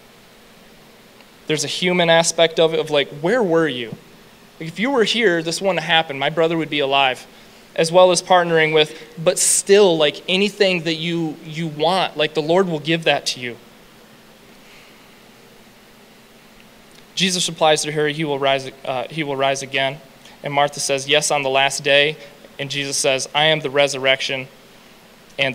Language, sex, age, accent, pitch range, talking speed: English, male, 20-39, American, 145-175 Hz, 165 wpm